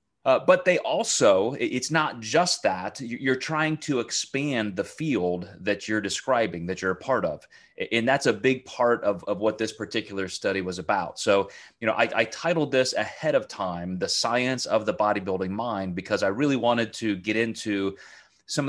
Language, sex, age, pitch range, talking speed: English, male, 30-49, 100-125 Hz, 185 wpm